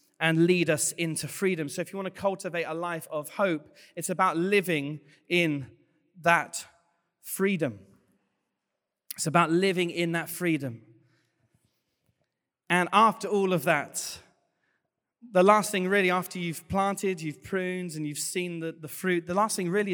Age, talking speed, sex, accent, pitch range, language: 30-49, 155 wpm, male, British, 160-185 Hz, English